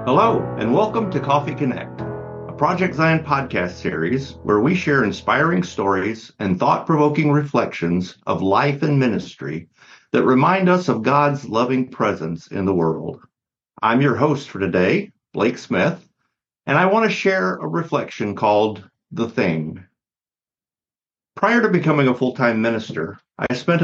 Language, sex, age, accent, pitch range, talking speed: English, male, 50-69, American, 95-145 Hz, 145 wpm